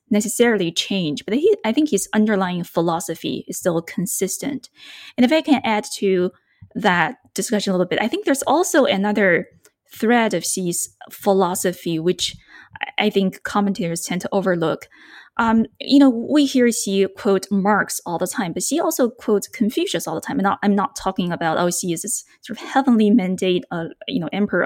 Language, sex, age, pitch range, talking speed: English, female, 20-39, 180-250 Hz, 180 wpm